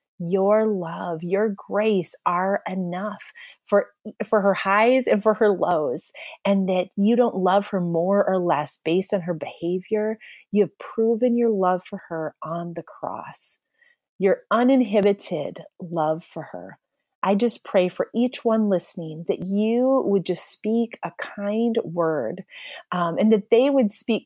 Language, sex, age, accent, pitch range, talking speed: English, female, 30-49, American, 175-220 Hz, 155 wpm